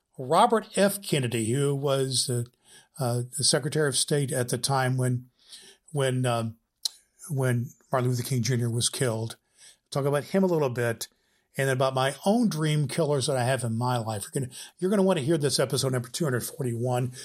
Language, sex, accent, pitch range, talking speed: English, male, American, 125-165 Hz, 190 wpm